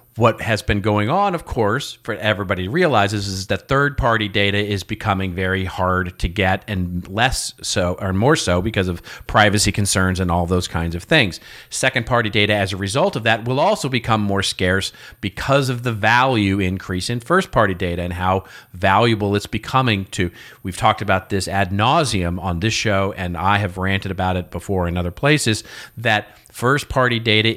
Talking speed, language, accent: 185 wpm, English, American